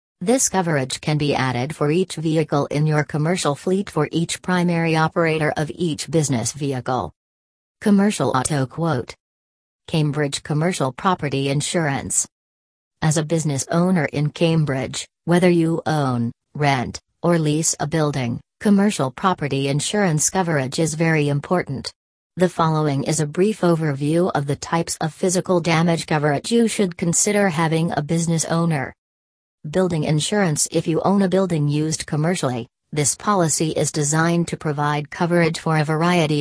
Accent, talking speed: American, 145 wpm